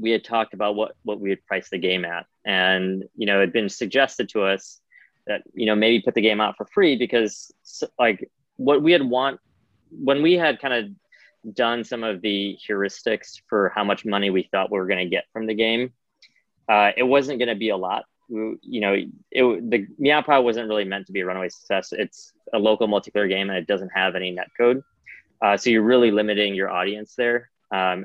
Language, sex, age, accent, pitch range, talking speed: English, male, 20-39, American, 95-120 Hz, 225 wpm